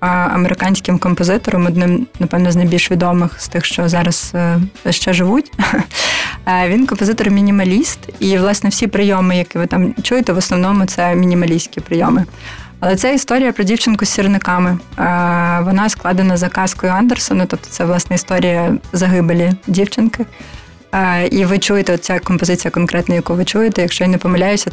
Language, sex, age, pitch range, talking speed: Ukrainian, female, 20-39, 175-195 Hz, 145 wpm